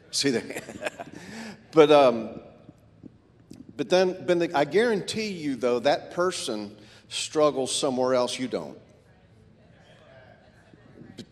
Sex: male